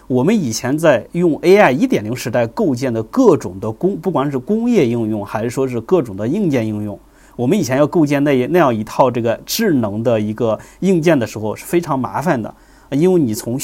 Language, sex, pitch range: Chinese, male, 120-180 Hz